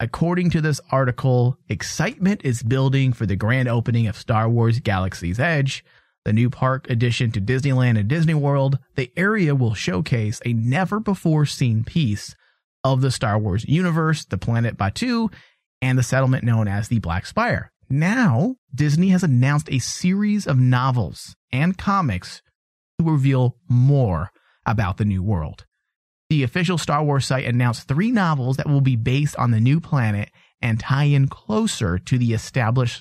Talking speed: 165 wpm